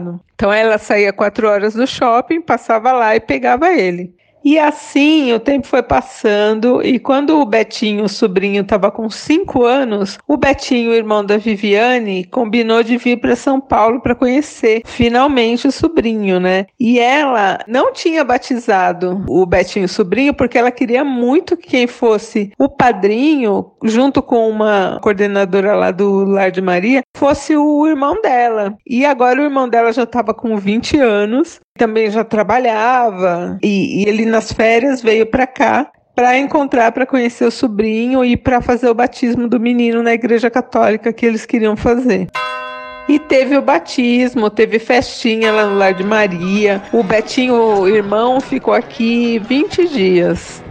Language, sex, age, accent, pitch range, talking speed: Portuguese, female, 40-59, Brazilian, 210-260 Hz, 160 wpm